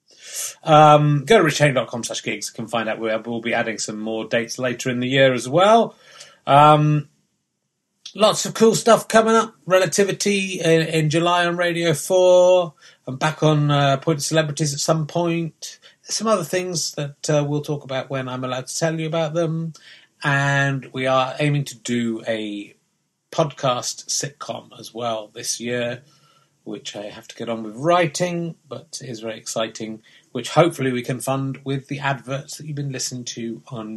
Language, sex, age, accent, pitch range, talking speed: English, male, 30-49, British, 120-165 Hz, 180 wpm